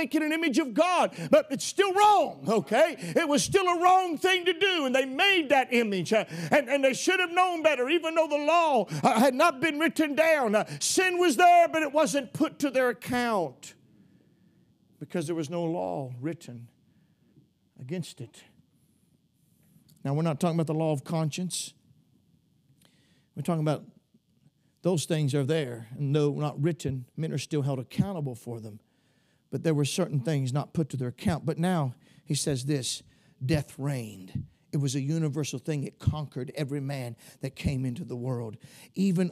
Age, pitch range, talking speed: 50-69, 150-250 Hz, 180 wpm